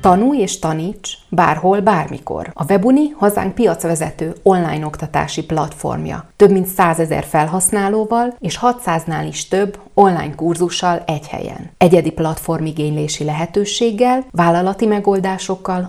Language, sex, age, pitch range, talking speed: Hungarian, female, 30-49, 165-200 Hz, 115 wpm